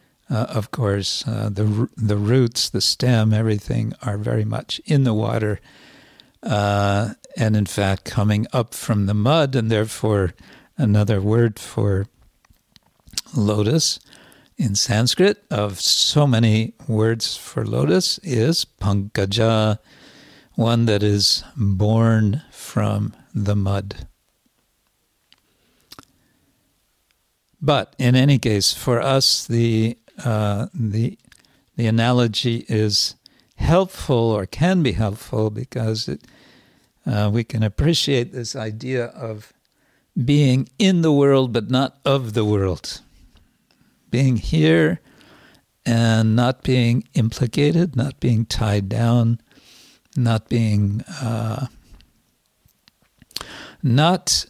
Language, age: English, 60-79